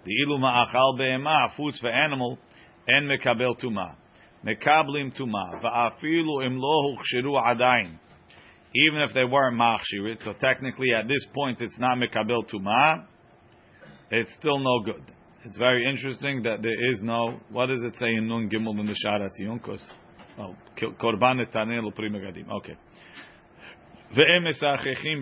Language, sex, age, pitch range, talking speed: English, male, 40-59, 115-135 Hz, 120 wpm